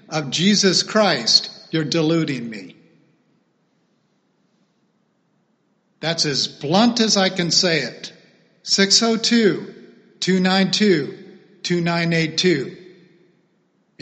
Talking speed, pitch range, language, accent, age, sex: 65 wpm, 155-205 Hz, English, American, 50-69, male